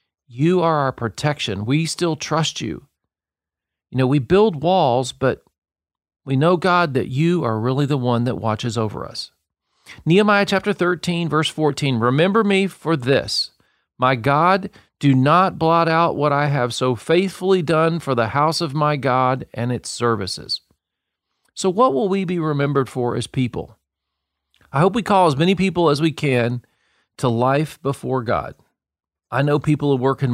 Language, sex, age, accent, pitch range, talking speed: English, male, 40-59, American, 115-160 Hz, 170 wpm